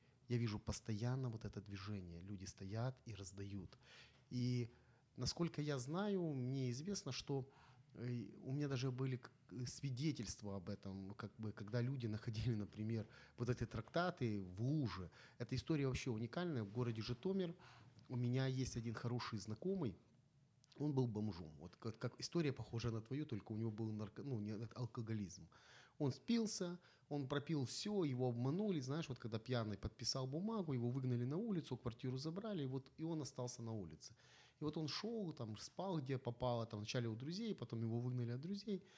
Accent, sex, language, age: native, male, Ukrainian, 30-49